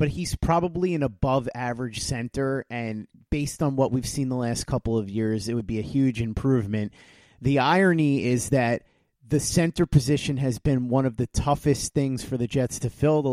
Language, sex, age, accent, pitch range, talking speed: English, male, 30-49, American, 120-145 Hz, 195 wpm